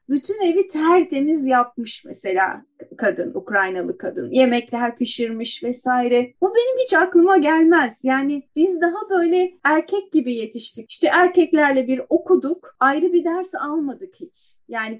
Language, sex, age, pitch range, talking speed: Turkish, female, 30-49, 230-320 Hz, 130 wpm